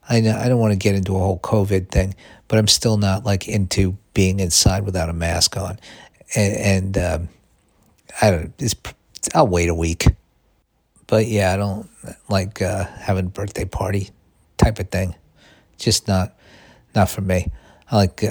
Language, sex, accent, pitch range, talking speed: English, male, American, 95-110 Hz, 175 wpm